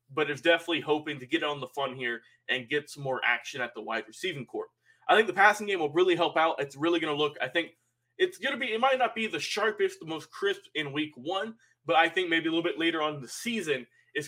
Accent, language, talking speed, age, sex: American, English, 275 wpm, 20-39, male